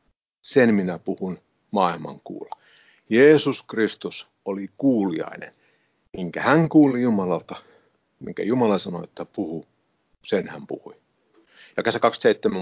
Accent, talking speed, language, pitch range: native, 115 wpm, Finnish, 95-135 Hz